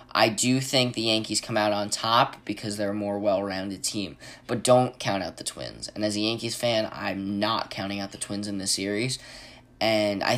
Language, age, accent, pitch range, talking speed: English, 10-29, American, 100-125 Hz, 215 wpm